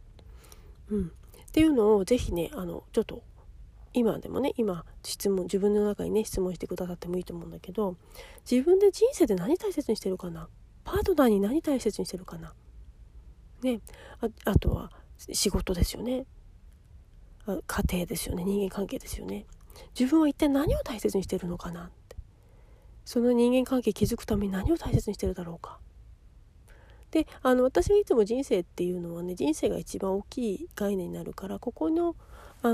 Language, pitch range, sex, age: Japanese, 175-250 Hz, female, 40-59